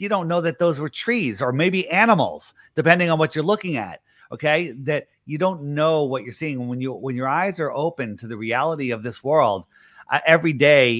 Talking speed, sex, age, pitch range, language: 220 wpm, male, 30-49, 120-155 Hz, English